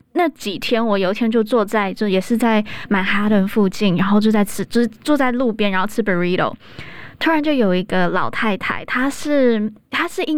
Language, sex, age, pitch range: Chinese, female, 20-39, 200-245 Hz